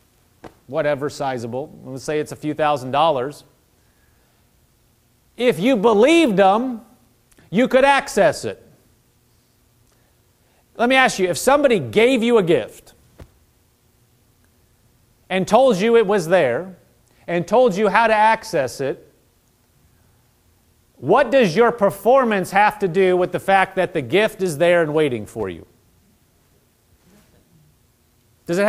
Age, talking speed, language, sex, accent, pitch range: 40-59, 130 wpm, English, male, American, 150-230 Hz